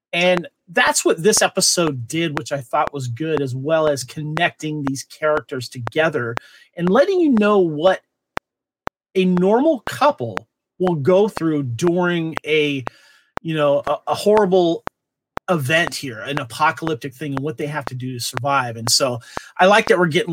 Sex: male